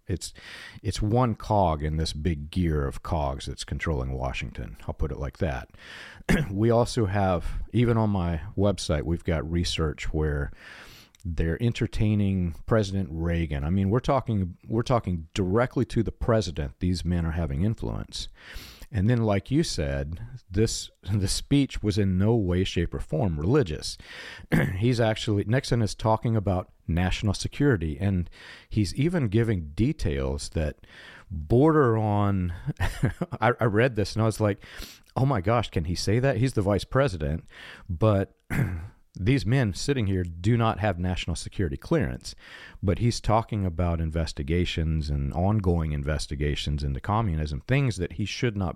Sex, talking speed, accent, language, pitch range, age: male, 155 wpm, American, English, 85-115 Hz, 40-59